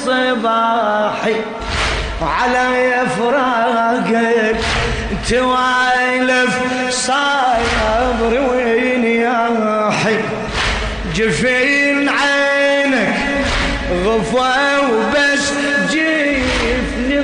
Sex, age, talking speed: male, 20-39, 40 wpm